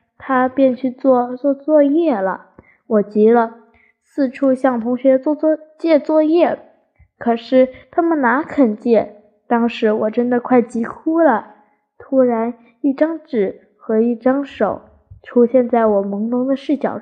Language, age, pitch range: Chinese, 10-29, 225-285 Hz